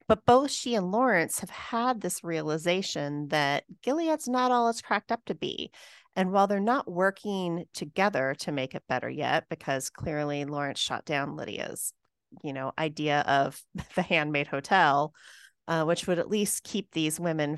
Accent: American